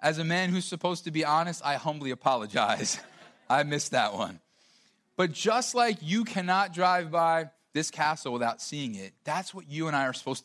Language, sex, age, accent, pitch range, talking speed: English, male, 30-49, American, 145-190 Hz, 195 wpm